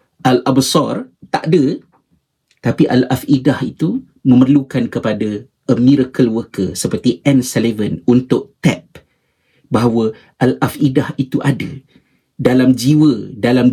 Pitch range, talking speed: 110-140 Hz, 100 wpm